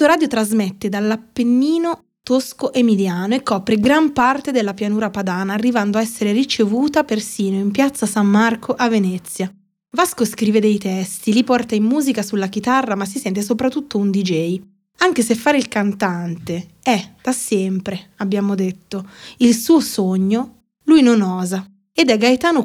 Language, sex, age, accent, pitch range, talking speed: Italian, female, 20-39, native, 195-255 Hz, 155 wpm